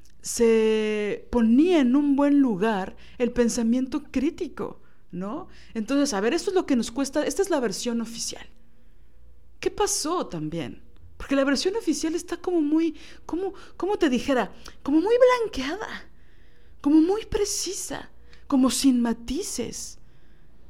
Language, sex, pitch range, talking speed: Spanish, female, 175-285 Hz, 135 wpm